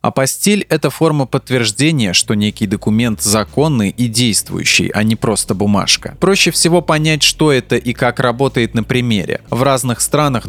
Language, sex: Russian, male